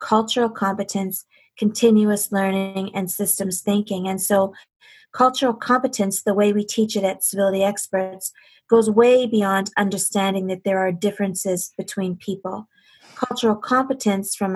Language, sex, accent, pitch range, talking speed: English, female, American, 195-220 Hz, 130 wpm